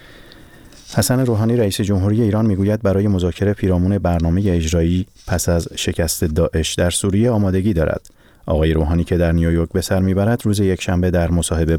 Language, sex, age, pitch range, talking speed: Persian, male, 30-49, 80-95 Hz, 160 wpm